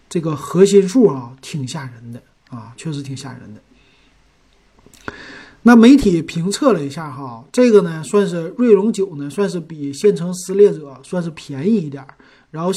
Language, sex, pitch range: Chinese, male, 140-195 Hz